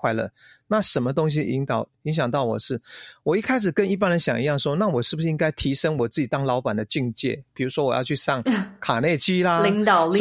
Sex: male